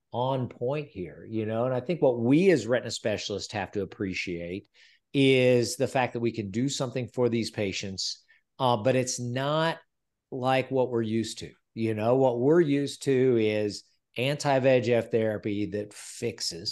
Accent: American